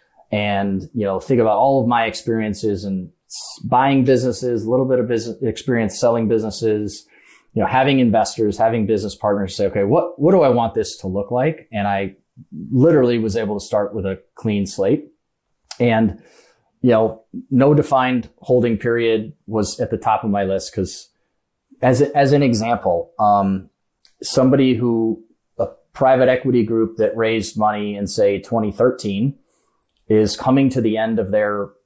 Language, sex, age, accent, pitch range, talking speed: English, male, 30-49, American, 100-130 Hz, 170 wpm